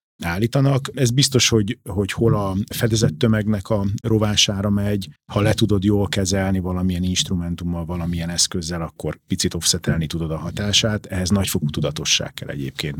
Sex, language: male, Hungarian